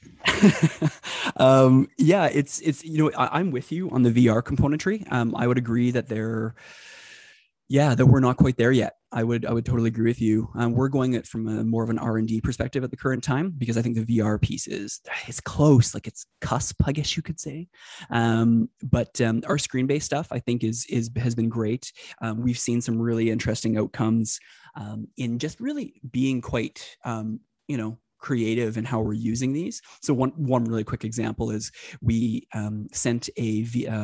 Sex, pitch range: male, 115-130 Hz